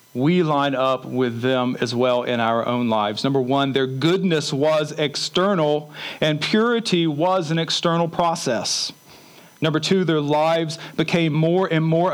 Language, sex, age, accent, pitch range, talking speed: English, male, 40-59, American, 130-175 Hz, 155 wpm